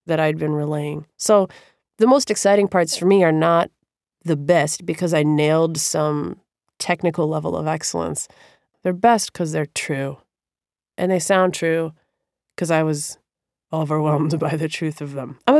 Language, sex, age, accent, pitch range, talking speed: English, female, 20-39, American, 155-200 Hz, 160 wpm